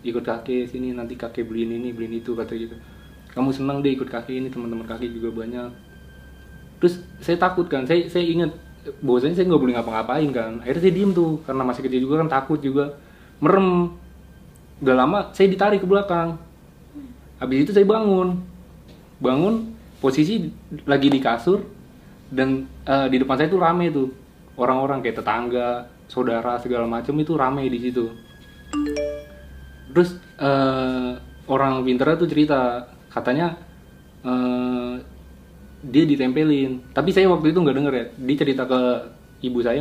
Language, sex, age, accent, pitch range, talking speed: Indonesian, male, 20-39, native, 120-150 Hz, 150 wpm